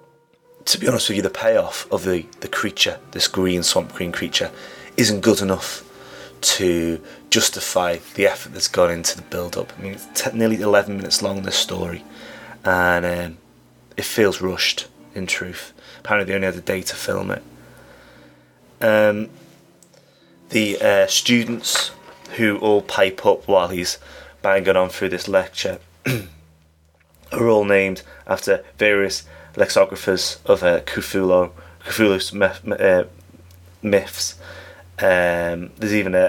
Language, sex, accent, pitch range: English, male, British, 85-105 Hz